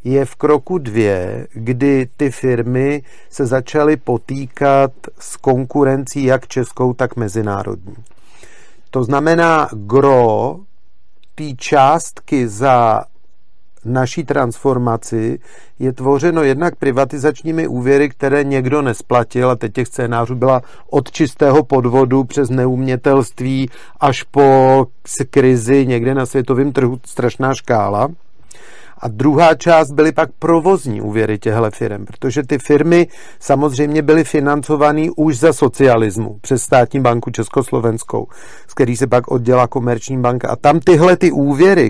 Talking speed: 120 wpm